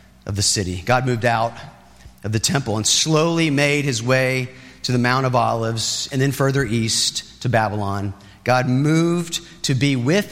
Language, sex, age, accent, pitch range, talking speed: English, male, 30-49, American, 115-155 Hz, 175 wpm